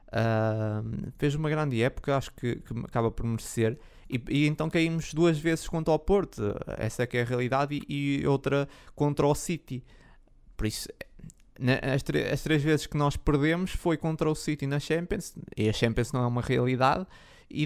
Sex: male